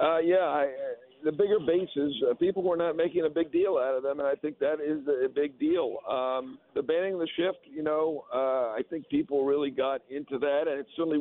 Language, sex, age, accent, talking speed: English, male, 50-69, American, 235 wpm